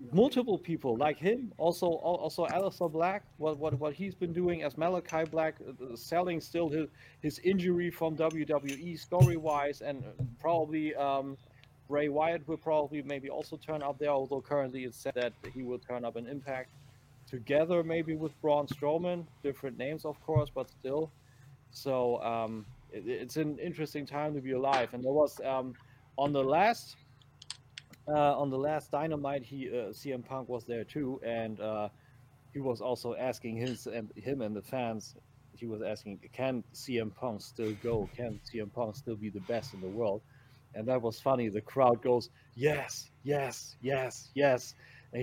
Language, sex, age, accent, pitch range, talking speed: English, male, 40-59, German, 125-150 Hz, 175 wpm